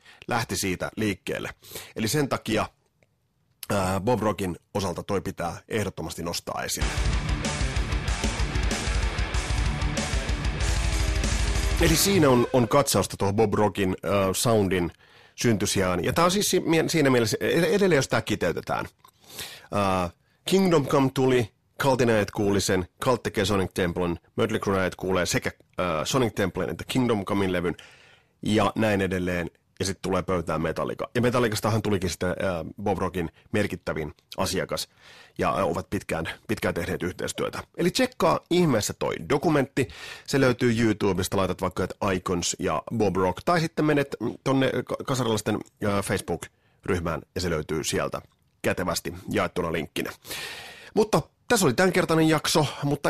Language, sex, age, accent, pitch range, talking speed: Finnish, male, 30-49, native, 95-140 Hz, 125 wpm